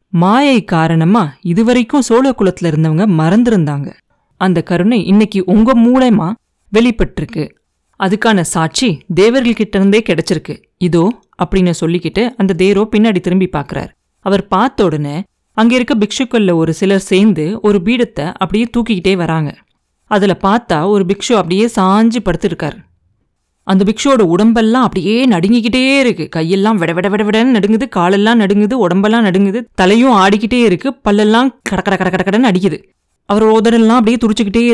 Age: 30-49